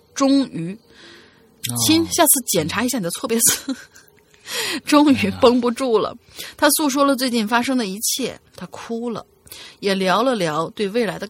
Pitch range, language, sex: 180-265 Hz, Chinese, female